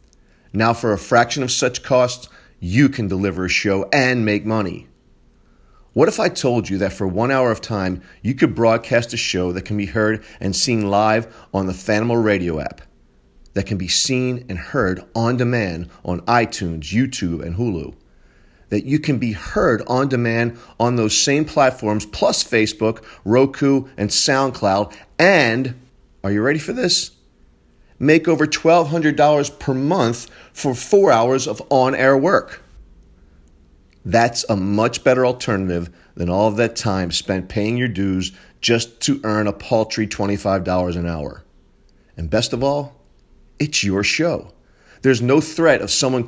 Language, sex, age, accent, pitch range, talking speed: English, male, 40-59, American, 95-130 Hz, 160 wpm